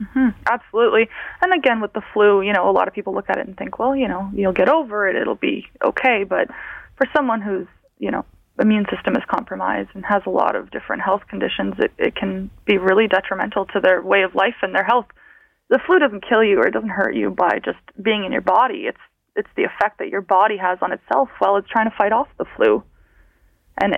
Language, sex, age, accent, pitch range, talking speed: English, female, 20-39, American, 200-260 Hz, 240 wpm